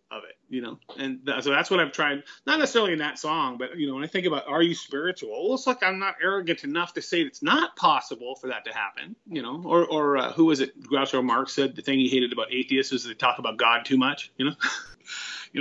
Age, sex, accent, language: 30-49, male, American, English